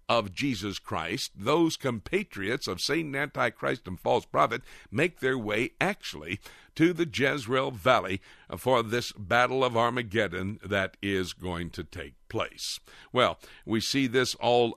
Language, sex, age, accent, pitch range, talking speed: English, male, 60-79, American, 105-140 Hz, 140 wpm